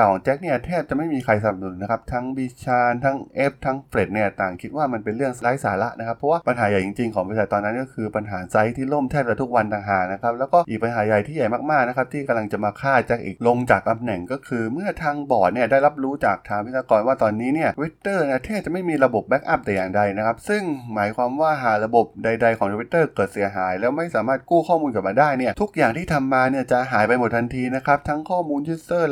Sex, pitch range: male, 105-135 Hz